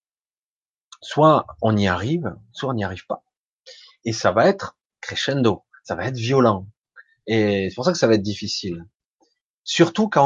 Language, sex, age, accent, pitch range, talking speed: French, male, 30-49, French, 105-135 Hz, 170 wpm